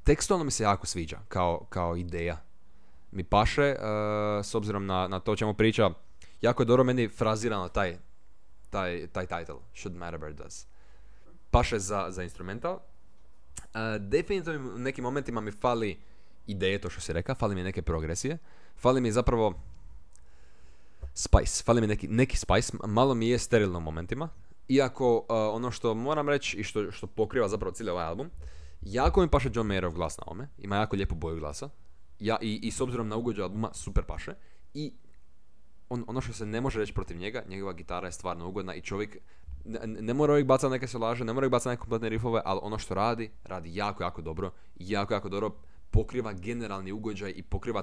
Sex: male